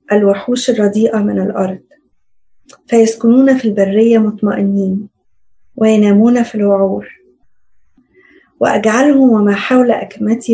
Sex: female